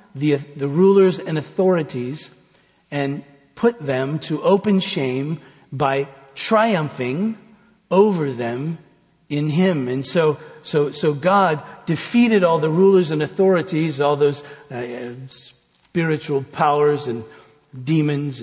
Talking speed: 115 wpm